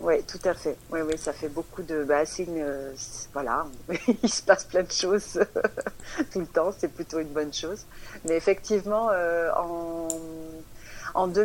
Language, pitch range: French, 155-190 Hz